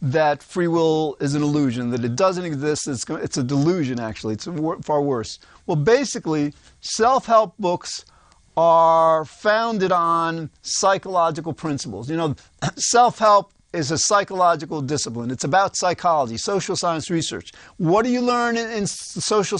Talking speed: 145 wpm